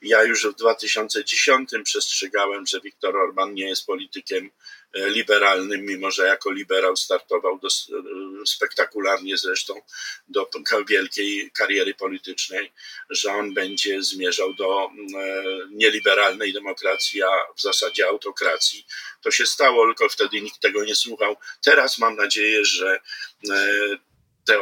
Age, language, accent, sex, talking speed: 50-69, Polish, native, male, 120 wpm